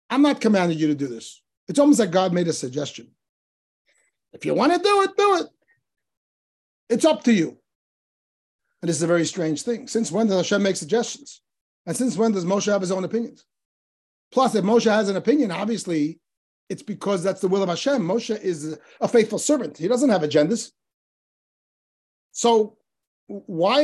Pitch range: 175-235 Hz